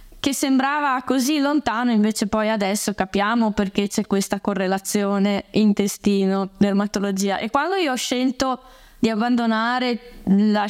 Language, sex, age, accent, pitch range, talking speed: Italian, female, 20-39, native, 210-240 Hz, 120 wpm